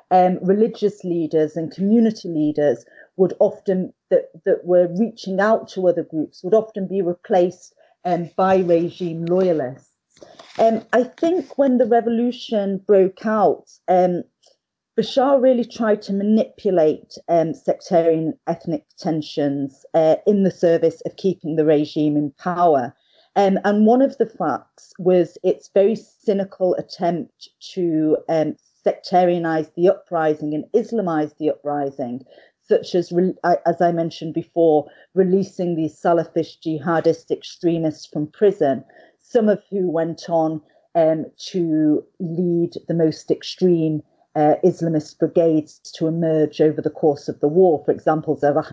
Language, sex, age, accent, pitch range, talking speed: English, female, 40-59, British, 155-195 Hz, 135 wpm